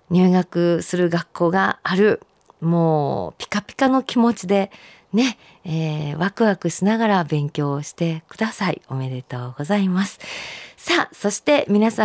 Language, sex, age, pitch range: Japanese, female, 50-69, 185-235 Hz